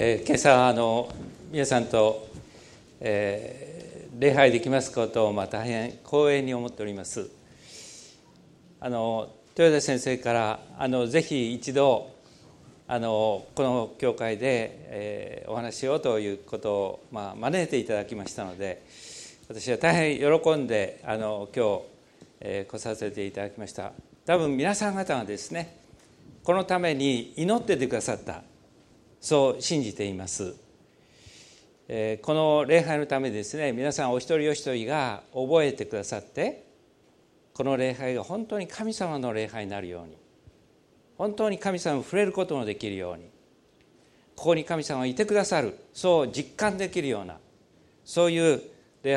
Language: Japanese